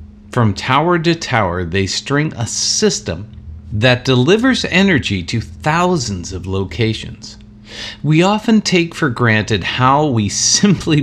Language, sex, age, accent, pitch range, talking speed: English, male, 50-69, American, 105-135 Hz, 125 wpm